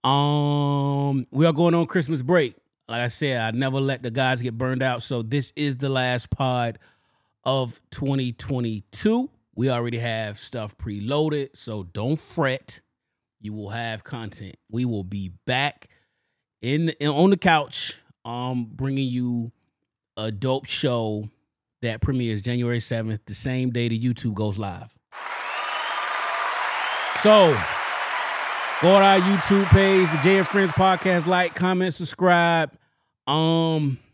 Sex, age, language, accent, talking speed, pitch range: male, 30-49, English, American, 135 wpm, 105-140 Hz